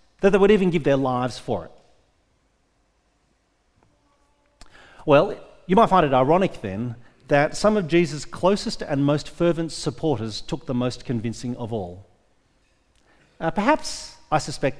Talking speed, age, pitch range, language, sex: 140 wpm, 40-59, 125-165 Hz, English, male